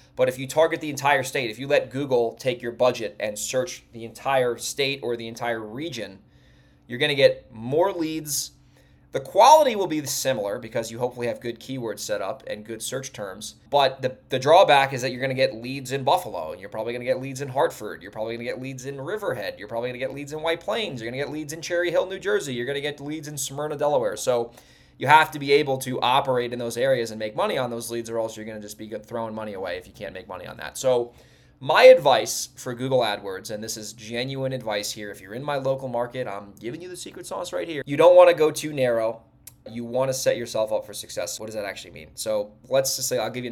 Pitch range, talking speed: 115-145 Hz, 260 wpm